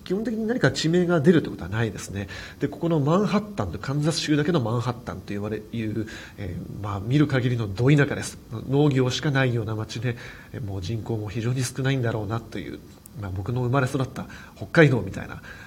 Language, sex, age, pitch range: Japanese, male, 40-59, 105-150 Hz